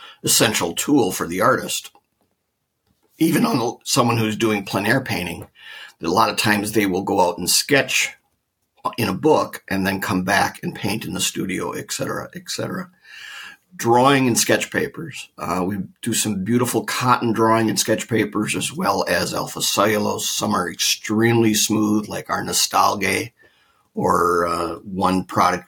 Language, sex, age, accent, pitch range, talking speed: English, male, 50-69, American, 95-115 Hz, 165 wpm